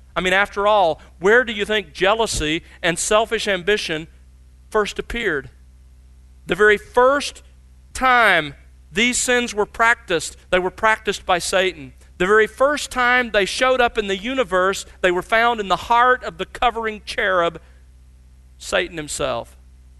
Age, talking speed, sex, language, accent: 40-59, 145 wpm, male, English, American